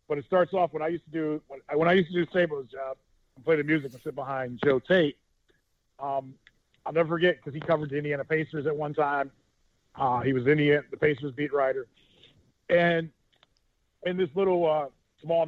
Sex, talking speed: male, 200 wpm